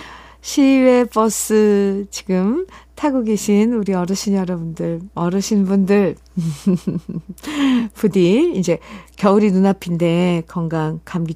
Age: 40-59